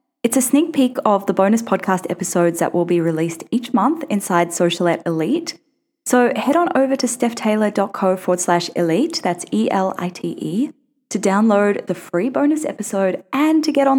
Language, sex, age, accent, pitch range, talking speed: English, female, 10-29, Australian, 175-250 Hz, 165 wpm